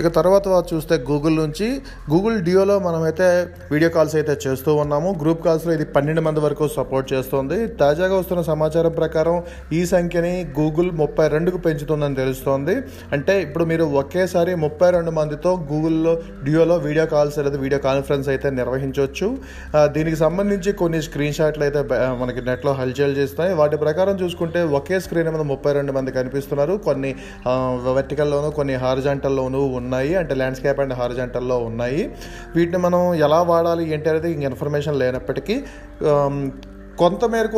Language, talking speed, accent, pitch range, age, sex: Telugu, 140 wpm, native, 135-170 Hz, 30-49, male